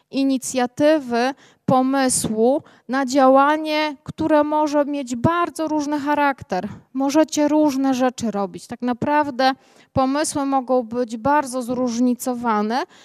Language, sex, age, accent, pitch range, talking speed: Polish, female, 20-39, native, 250-285 Hz, 95 wpm